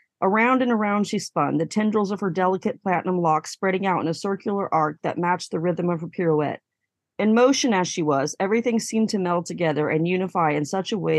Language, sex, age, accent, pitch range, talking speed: English, female, 40-59, American, 170-200 Hz, 220 wpm